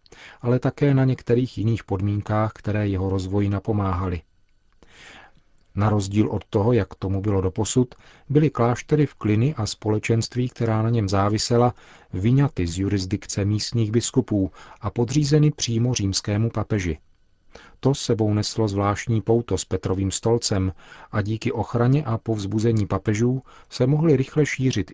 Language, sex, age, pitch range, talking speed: Czech, male, 40-59, 100-115 Hz, 135 wpm